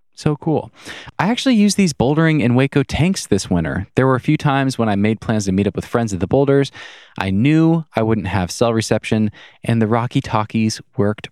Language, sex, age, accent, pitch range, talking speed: English, male, 20-39, American, 100-145 Hz, 215 wpm